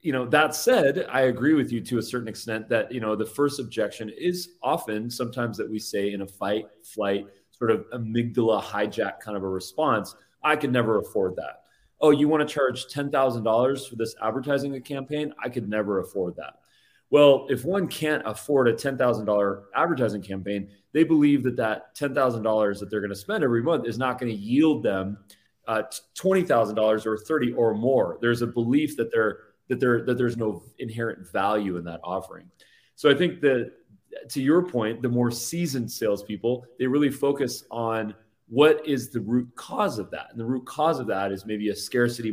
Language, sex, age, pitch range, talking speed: English, male, 30-49, 110-130 Hz, 205 wpm